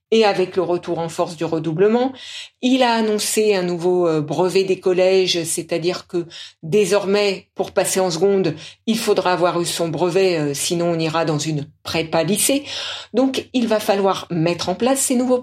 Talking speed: 175 wpm